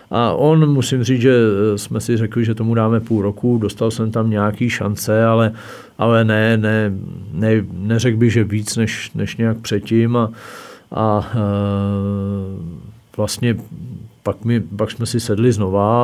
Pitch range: 100-115 Hz